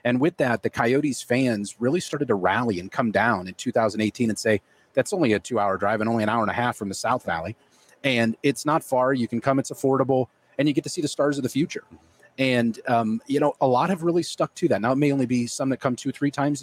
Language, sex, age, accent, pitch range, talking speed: English, male, 30-49, American, 110-130 Hz, 265 wpm